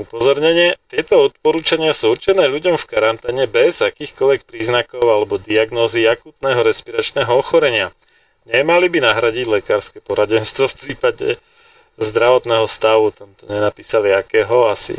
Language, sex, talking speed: Slovak, male, 115 wpm